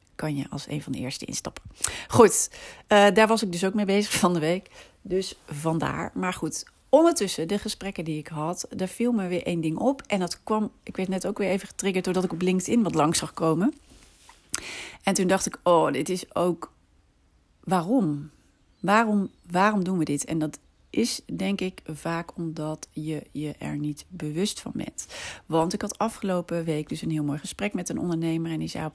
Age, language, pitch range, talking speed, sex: 40-59, Dutch, 150-195 Hz, 205 wpm, female